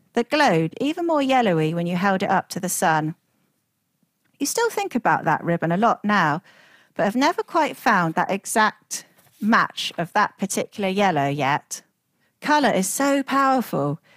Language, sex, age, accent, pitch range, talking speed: English, female, 40-59, British, 170-235 Hz, 165 wpm